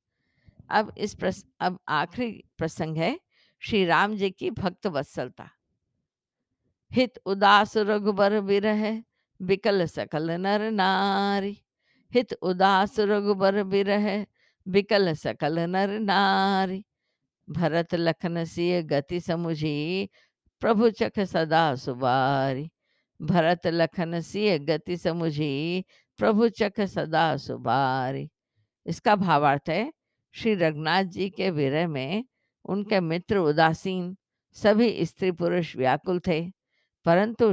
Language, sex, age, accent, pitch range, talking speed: Hindi, female, 50-69, native, 160-205 Hz, 100 wpm